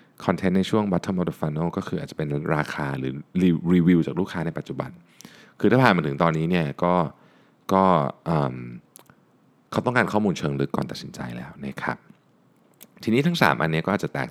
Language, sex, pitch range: Thai, male, 70-95 Hz